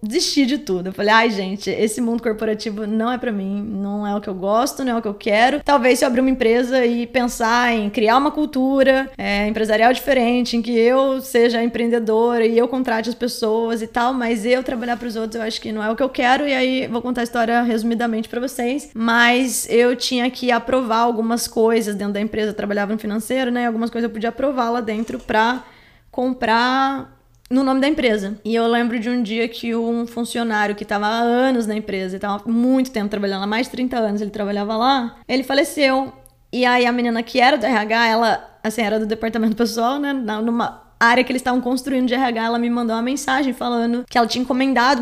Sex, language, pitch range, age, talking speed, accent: female, Portuguese, 225-260 Hz, 20-39, 225 wpm, Brazilian